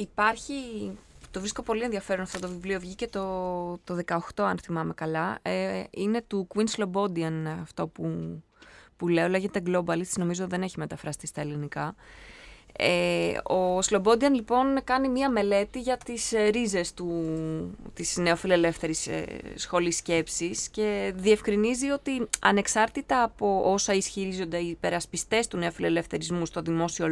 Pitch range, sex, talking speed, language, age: 170-220 Hz, female, 135 wpm, Greek, 20-39